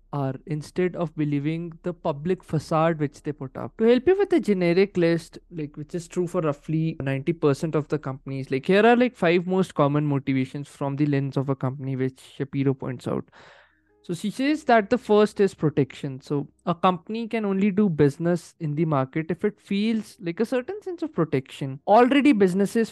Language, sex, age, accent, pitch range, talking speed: Hindi, male, 20-39, native, 145-195 Hz, 195 wpm